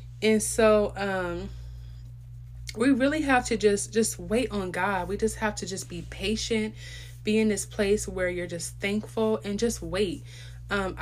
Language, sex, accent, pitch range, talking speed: English, female, American, 165-215 Hz, 170 wpm